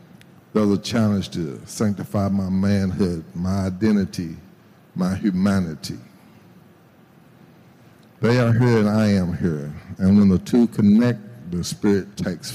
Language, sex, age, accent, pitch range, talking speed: English, male, 60-79, American, 95-120 Hz, 125 wpm